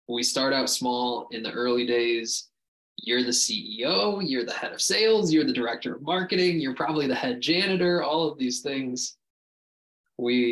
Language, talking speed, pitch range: English, 175 wpm, 115-145 Hz